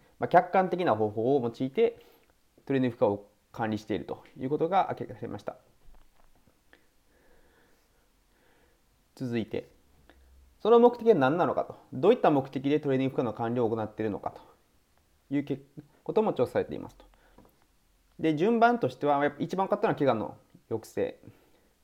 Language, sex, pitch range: Japanese, male, 120-155 Hz